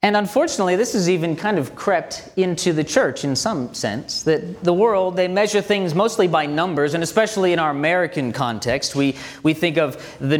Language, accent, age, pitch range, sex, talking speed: English, American, 30-49, 145-190 Hz, male, 195 wpm